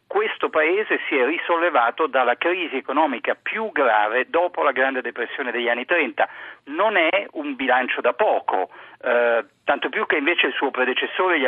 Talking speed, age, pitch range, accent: 165 wpm, 50-69, 125-180 Hz, native